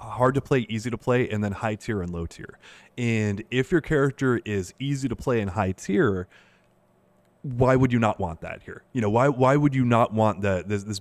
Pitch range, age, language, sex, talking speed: 95-120 Hz, 20-39, English, male, 230 wpm